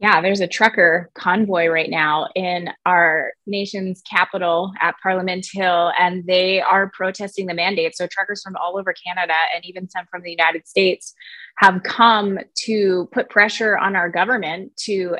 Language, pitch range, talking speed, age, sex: English, 180-210 Hz, 165 wpm, 20-39, female